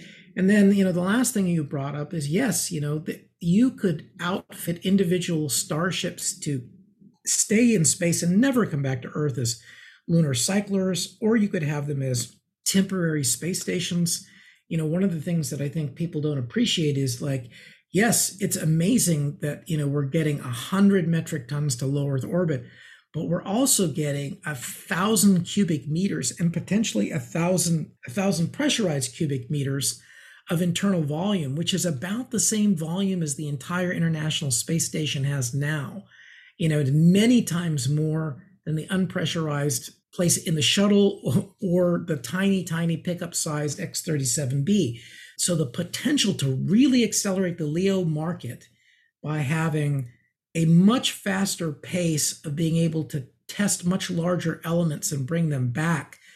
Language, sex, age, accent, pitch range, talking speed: English, male, 50-69, American, 150-190 Hz, 160 wpm